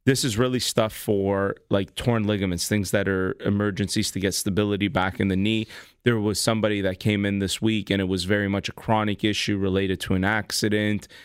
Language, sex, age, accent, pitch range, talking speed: English, male, 30-49, American, 100-115 Hz, 210 wpm